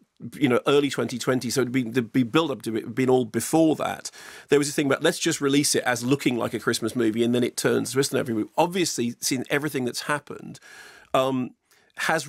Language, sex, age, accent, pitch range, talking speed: English, male, 40-59, British, 125-150 Hz, 230 wpm